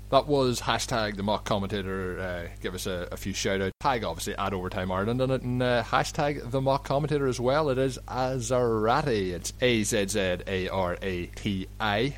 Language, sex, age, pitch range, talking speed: English, male, 30-49, 95-110 Hz, 165 wpm